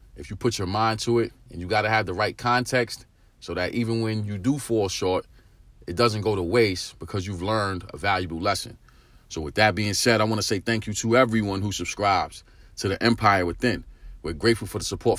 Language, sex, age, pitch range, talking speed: English, male, 40-59, 100-120 Hz, 230 wpm